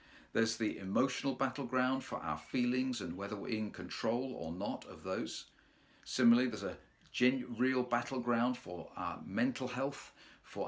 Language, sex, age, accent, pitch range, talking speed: English, male, 50-69, British, 115-130 Hz, 145 wpm